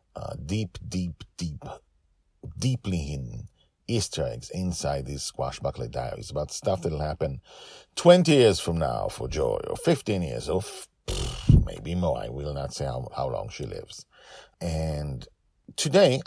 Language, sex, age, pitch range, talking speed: English, male, 50-69, 75-100 Hz, 150 wpm